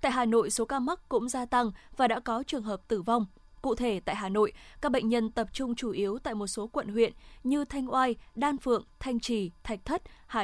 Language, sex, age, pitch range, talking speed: Vietnamese, female, 20-39, 210-260 Hz, 245 wpm